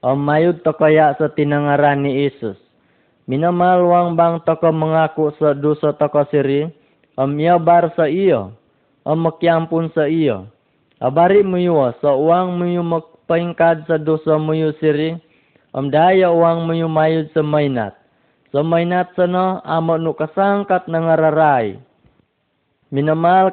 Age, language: 20-39, Malay